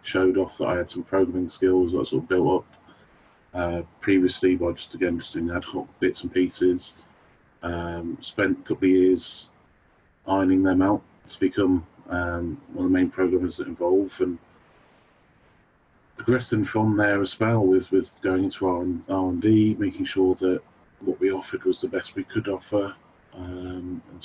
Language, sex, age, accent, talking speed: English, male, 30-49, British, 180 wpm